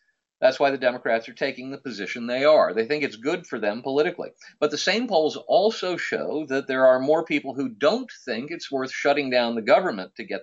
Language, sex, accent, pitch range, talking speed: English, male, American, 125-170 Hz, 225 wpm